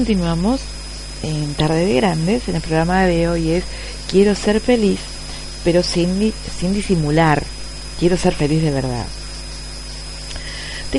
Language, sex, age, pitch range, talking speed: Spanish, female, 40-59, 150-200 Hz, 130 wpm